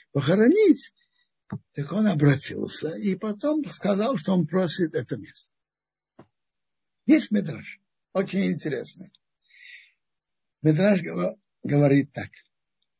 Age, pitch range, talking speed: 60-79, 150-215 Hz, 90 wpm